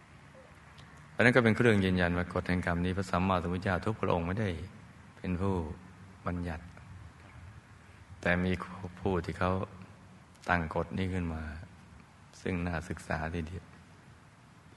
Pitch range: 85-95 Hz